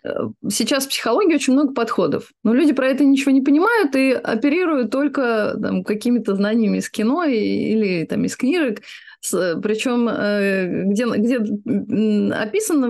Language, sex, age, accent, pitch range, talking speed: Russian, female, 30-49, native, 205-265 Hz, 125 wpm